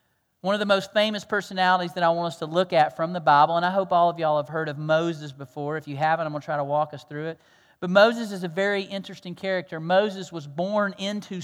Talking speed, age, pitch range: 260 wpm, 40-59, 170-200 Hz